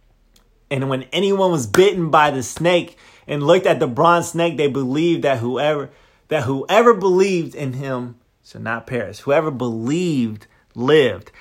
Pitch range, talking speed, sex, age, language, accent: 125-165 Hz, 155 wpm, male, 30-49, English, American